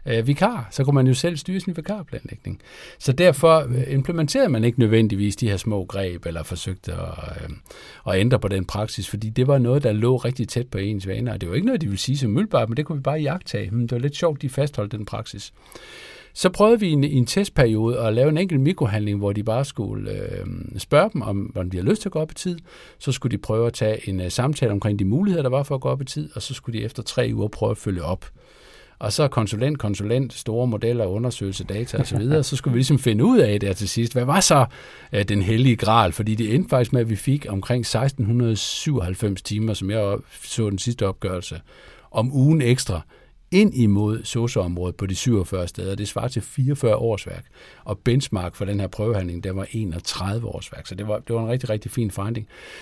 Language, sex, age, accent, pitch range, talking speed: Danish, male, 60-79, native, 105-140 Hz, 225 wpm